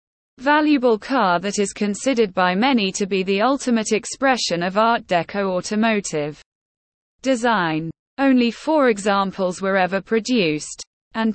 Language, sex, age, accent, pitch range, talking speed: English, female, 20-39, British, 180-250 Hz, 125 wpm